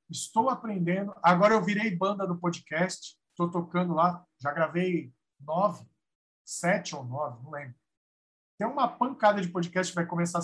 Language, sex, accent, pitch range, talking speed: Portuguese, male, Brazilian, 155-215 Hz, 155 wpm